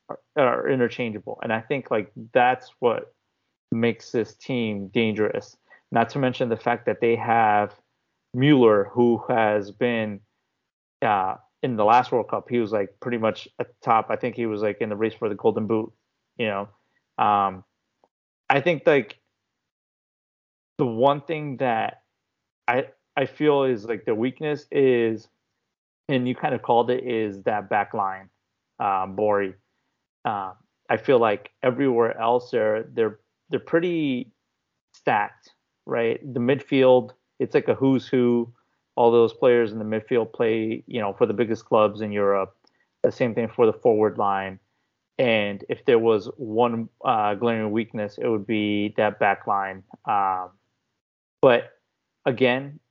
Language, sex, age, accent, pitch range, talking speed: English, male, 30-49, American, 105-130 Hz, 155 wpm